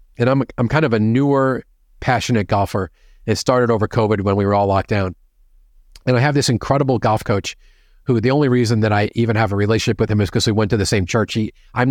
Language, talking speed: English, 240 wpm